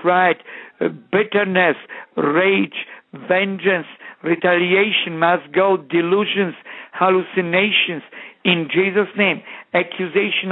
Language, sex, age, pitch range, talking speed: English, male, 60-79, 175-200 Hz, 75 wpm